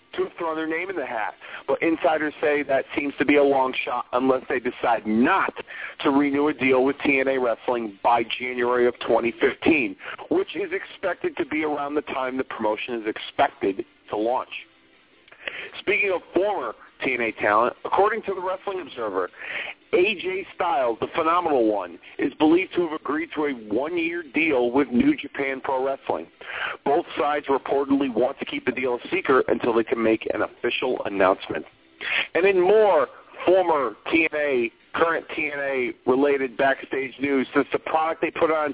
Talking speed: 165 wpm